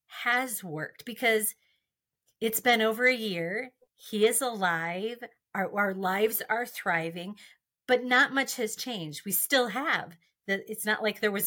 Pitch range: 190-225 Hz